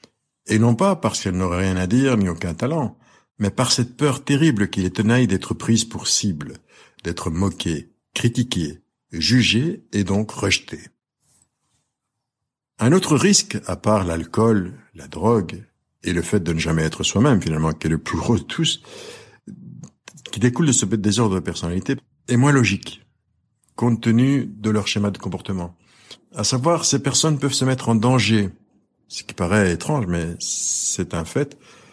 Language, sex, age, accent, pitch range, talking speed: French, male, 60-79, French, 95-130 Hz, 165 wpm